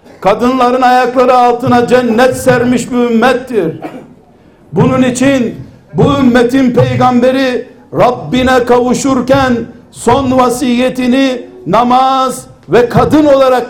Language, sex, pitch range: Turkish, male, 230-255 Hz